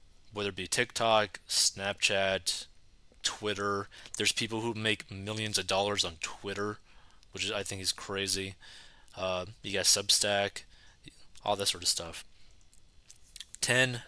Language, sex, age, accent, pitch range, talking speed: English, male, 20-39, American, 100-120 Hz, 130 wpm